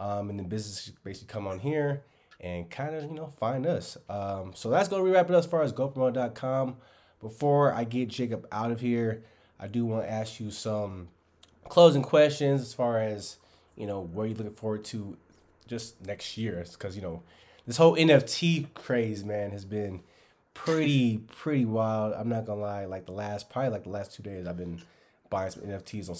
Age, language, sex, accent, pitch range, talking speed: 20-39, English, male, American, 95-125 Hz, 205 wpm